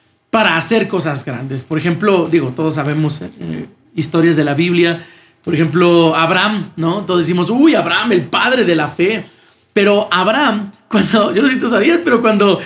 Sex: male